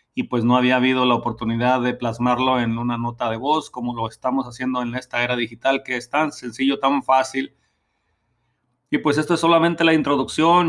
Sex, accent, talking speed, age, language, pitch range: male, Mexican, 195 wpm, 30-49, Spanish, 120-140 Hz